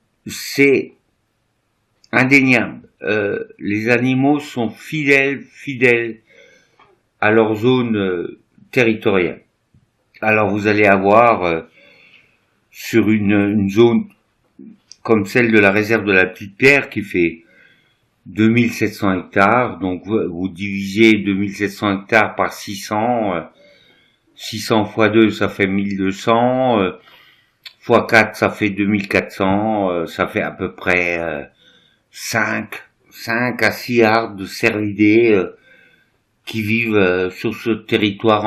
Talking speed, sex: 110 wpm, male